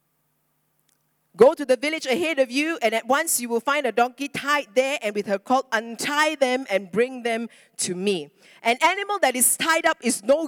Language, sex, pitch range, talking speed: English, female, 245-345 Hz, 205 wpm